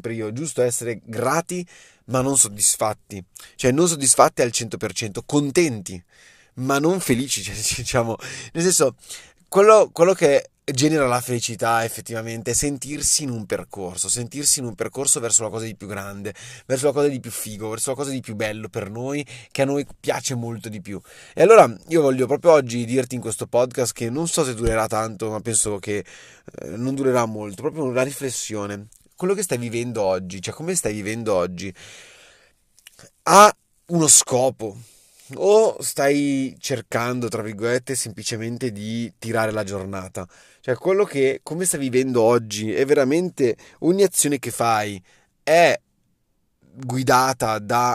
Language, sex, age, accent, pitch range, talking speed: Italian, male, 20-39, native, 110-140 Hz, 160 wpm